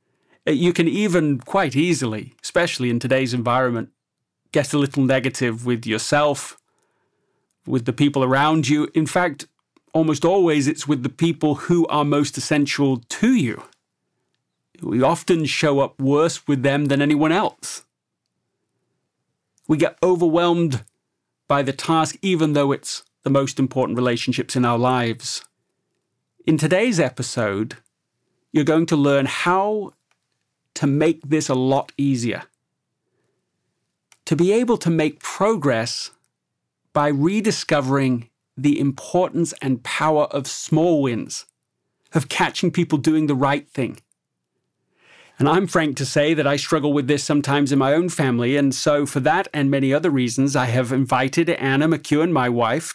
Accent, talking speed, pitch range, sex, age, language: British, 145 wpm, 130-160 Hz, male, 40-59, English